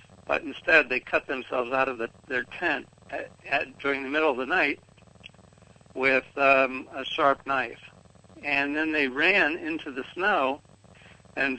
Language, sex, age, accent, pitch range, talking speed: English, male, 60-79, American, 125-145 Hz, 160 wpm